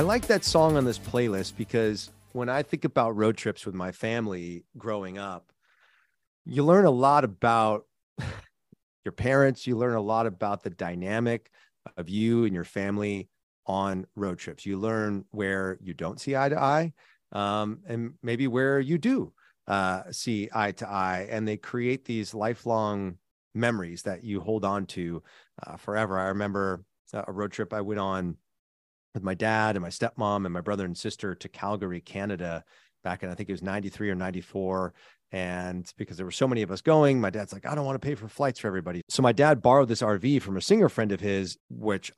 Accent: American